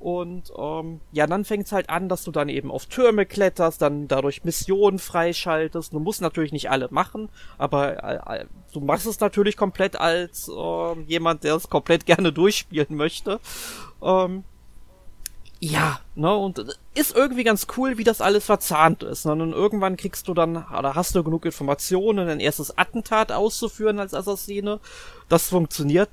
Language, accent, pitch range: German, German, 155-205 Hz